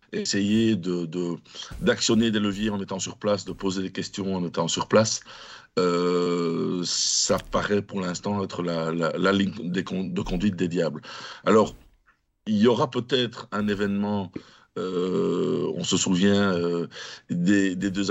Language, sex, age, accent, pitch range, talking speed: French, male, 50-69, French, 95-110 Hz, 160 wpm